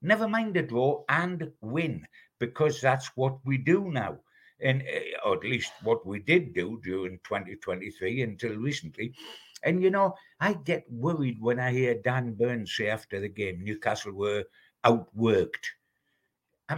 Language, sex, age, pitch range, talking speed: English, male, 60-79, 115-165 Hz, 155 wpm